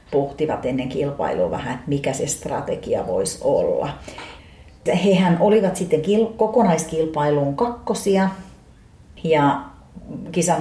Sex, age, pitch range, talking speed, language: female, 40-59, 140-195 Hz, 100 wpm, Finnish